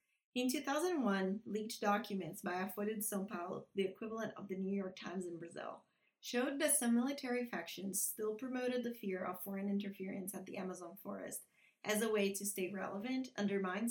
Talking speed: 175 wpm